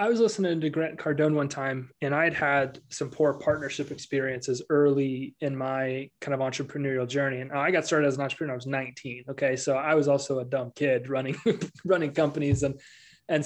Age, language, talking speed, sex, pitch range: 20-39, English, 200 wpm, male, 135-160 Hz